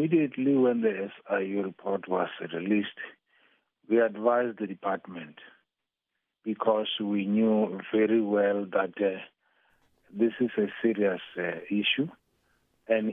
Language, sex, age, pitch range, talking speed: English, male, 50-69, 100-115 Hz, 115 wpm